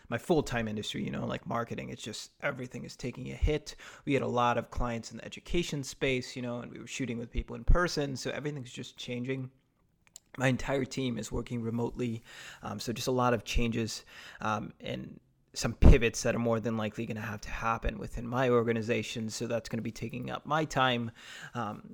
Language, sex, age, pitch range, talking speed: English, male, 20-39, 115-130 Hz, 215 wpm